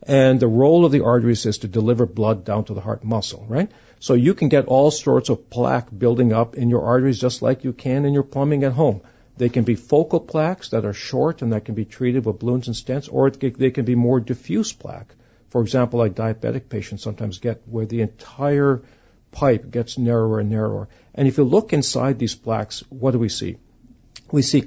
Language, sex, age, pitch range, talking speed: English, male, 50-69, 110-130 Hz, 225 wpm